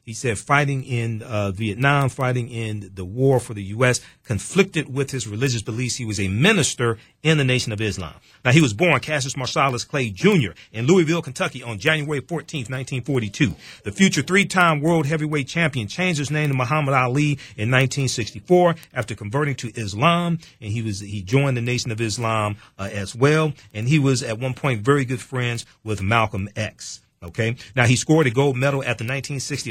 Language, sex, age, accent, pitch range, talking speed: English, male, 40-59, American, 115-145 Hz, 190 wpm